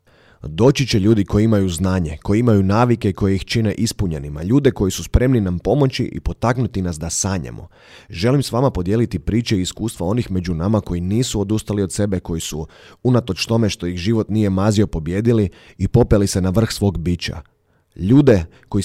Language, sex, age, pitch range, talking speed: Croatian, male, 30-49, 85-110 Hz, 185 wpm